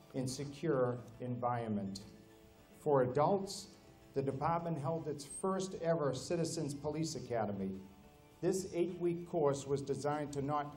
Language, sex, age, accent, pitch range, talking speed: English, male, 50-69, American, 125-165 Hz, 115 wpm